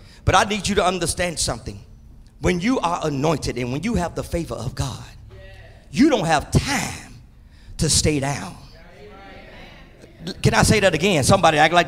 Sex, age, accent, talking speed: male, 40-59, American, 170 wpm